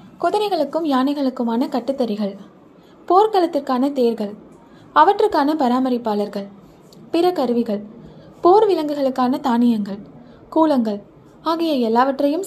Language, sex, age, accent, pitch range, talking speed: Tamil, female, 20-39, native, 225-310 Hz, 55 wpm